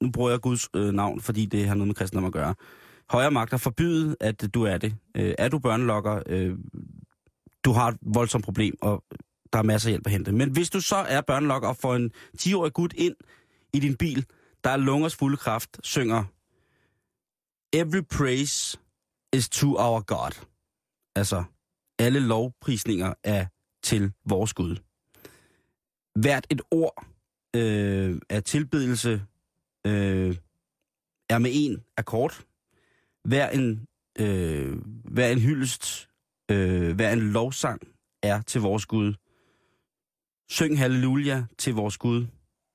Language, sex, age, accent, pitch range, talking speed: Danish, male, 30-49, native, 105-130 Hz, 145 wpm